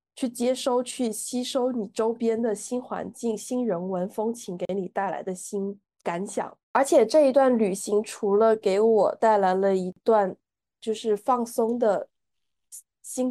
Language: Chinese